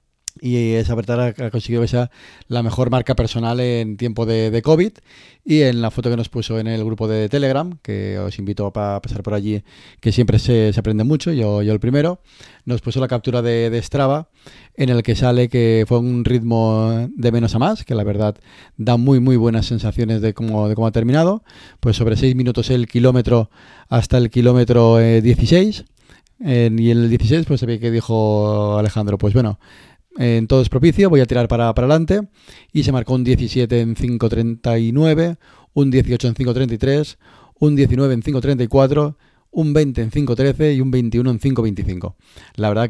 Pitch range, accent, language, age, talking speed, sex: 110-125 Hz, Spanish, Spanish, 30-49, 190 wpm, male